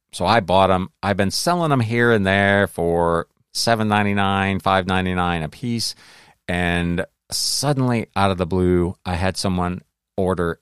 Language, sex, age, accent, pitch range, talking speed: English, male, 40-59, American, 90-115 Hz, 145 wpm